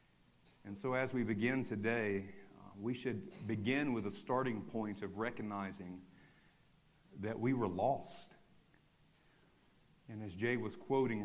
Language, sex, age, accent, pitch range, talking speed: English, male, 50-69, American, 100-125 Hz, 135 wpm